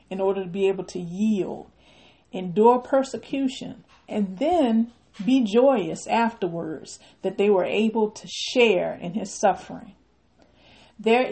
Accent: American